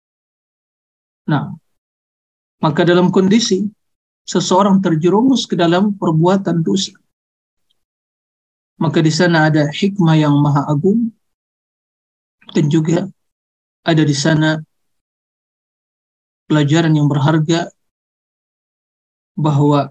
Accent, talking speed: native, 80 wpm